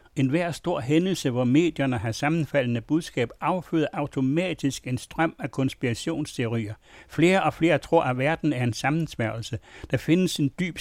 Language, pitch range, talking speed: Danish, 125-165 Hz, 155 wpm